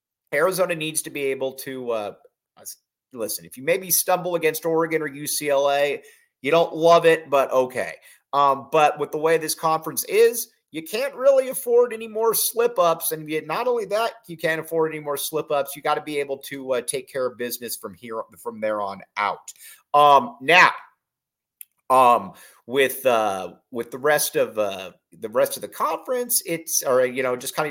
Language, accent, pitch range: English, American, 135-225 Hz